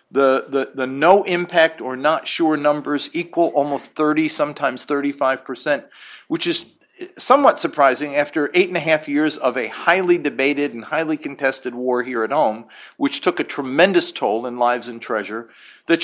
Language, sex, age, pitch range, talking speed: English, male, 50-69, 130-170 Hz, 175 wpm